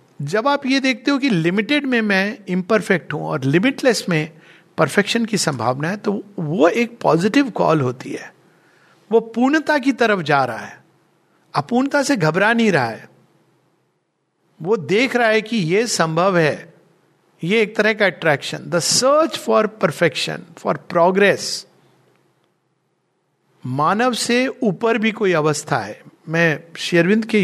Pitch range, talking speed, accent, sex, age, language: 160-235 Hz, 145 wpm, native, male, 50-69, Hindi